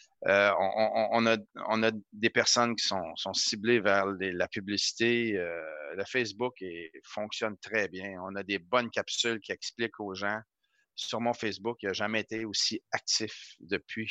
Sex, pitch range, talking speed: male, 105-125 Hz, 175 wpm